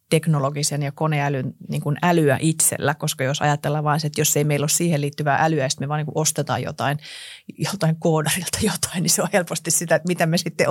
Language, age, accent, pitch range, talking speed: Finnish, 30-49, native, 145-165 Hz, 205 wpm